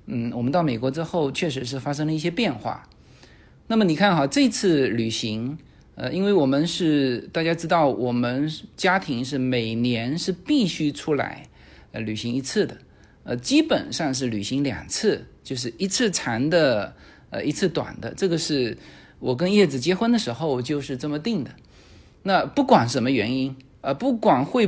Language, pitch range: Chinese, 125-190 Hz